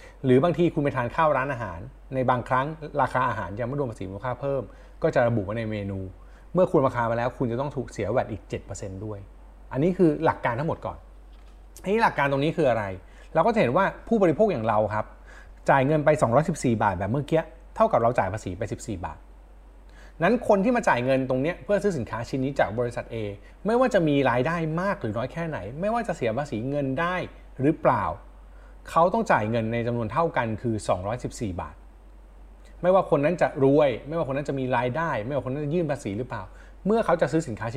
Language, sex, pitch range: Thai, male, 105-160 Hz